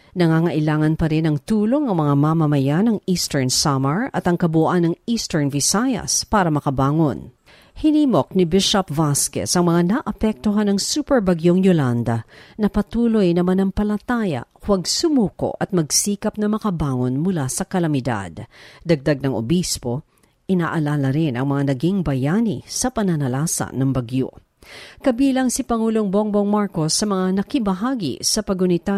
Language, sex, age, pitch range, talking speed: Filipino, female, 50-69, 155-215 Hz, 140 wpm